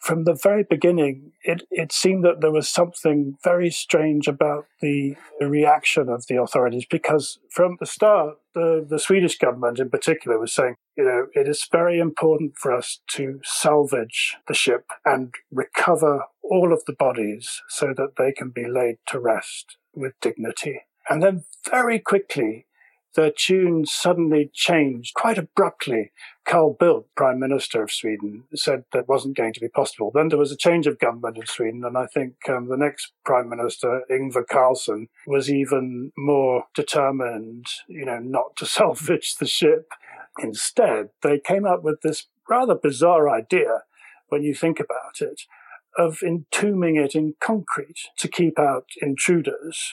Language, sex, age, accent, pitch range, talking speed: English, male, 50-69, British, 135-175 Hz, 165 wpm